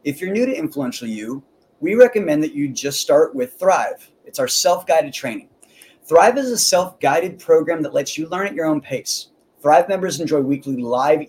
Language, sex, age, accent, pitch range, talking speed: English, male, 30-49, American, 145-220 Hz, 190 wpm